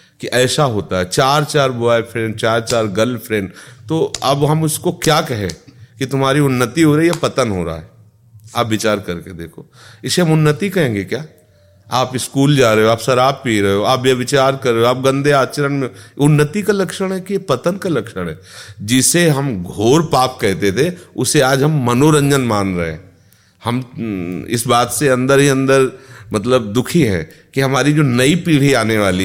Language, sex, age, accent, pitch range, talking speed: Hindi, male, 40-59, native, 105-155 Hz, 190 wpm